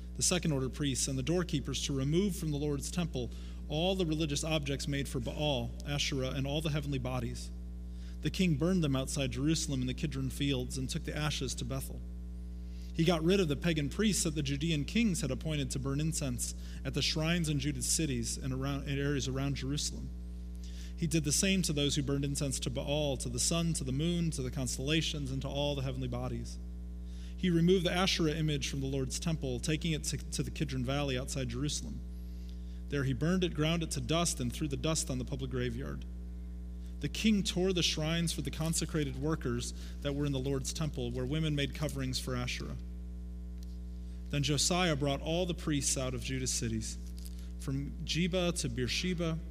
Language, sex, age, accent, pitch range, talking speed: English, male, 30-49, American, 120-155 Hz, 200 wpm